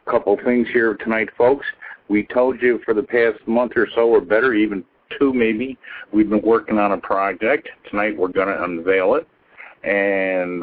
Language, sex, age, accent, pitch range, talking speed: English, male, 60-79, American, 95-140 Hz, 180 wpm